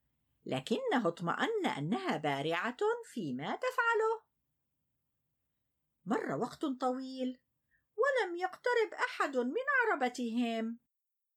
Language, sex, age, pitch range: Arabic, female, 50-69, 235-395 Hz